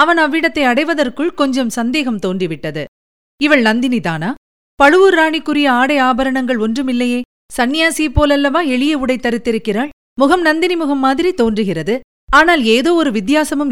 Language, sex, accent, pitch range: Tamil, female, native, 215-295 Hz